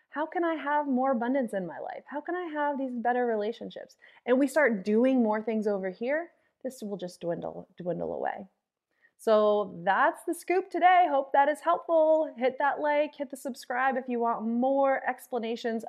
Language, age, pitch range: English, 30-49, 190-270 Hz